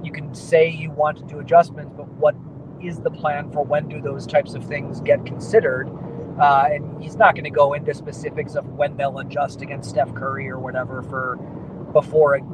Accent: American